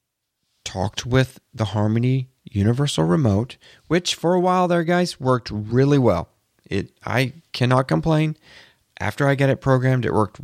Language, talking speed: English, 150 wpm